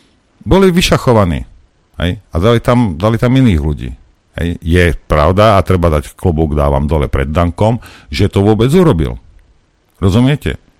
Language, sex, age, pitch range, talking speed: Slovak, male, 50-69, 75-100 Hz, 145 wpm